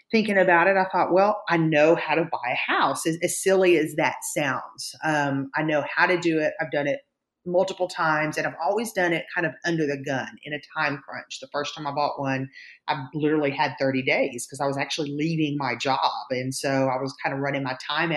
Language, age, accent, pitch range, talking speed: English, 30-49, American, 145-180 Hz, 240 wpm